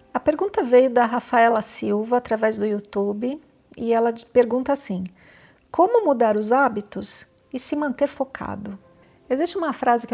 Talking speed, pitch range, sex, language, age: 150 wpm, 210-275 Hz, female, Portuguese, 50-69